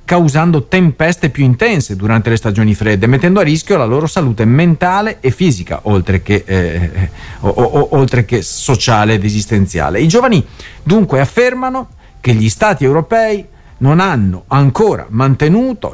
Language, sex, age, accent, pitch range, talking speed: Italian, male, 50-69, native, 110-165 Hz, 130 wpm